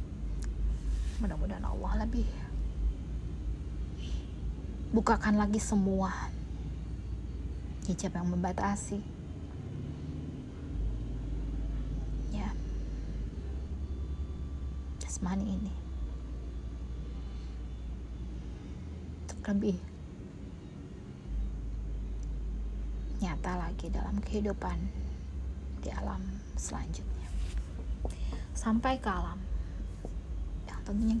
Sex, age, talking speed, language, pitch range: female, 20-39, 45 wpm, Indonesian, 70-90 Hz